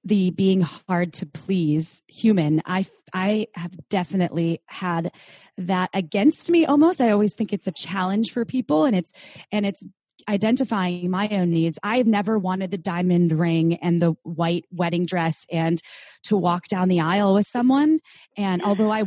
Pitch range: 170-205 Hz